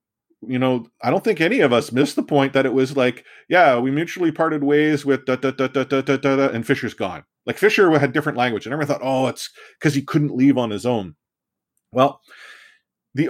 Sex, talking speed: male, 200 wpm